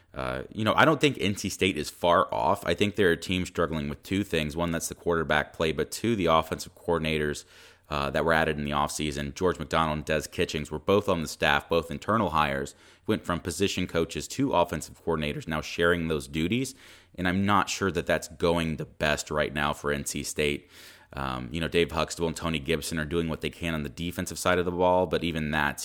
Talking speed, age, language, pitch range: 225 wpm, 30-49, English, 75-90 Hz